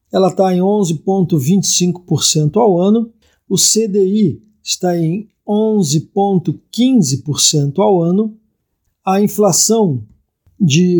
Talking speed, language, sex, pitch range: 85 wpm, Portuguese, male, 155-205 Hz